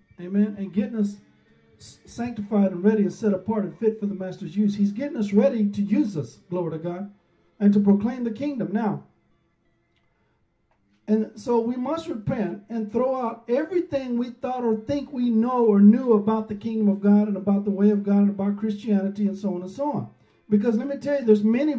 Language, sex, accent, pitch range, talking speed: English, male, American, 200-230 Hz, 210 wpm